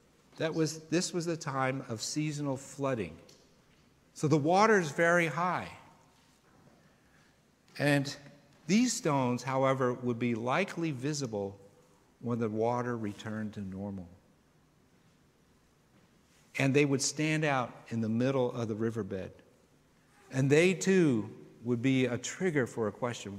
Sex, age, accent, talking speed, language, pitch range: male, 50-69, American, 130 wpm, English, 110-155 Hz